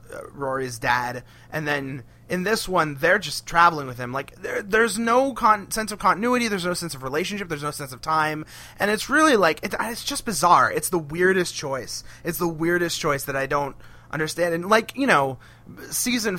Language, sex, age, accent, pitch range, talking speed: English, male, 30-49, American, 135-210 Hz, 200 wpm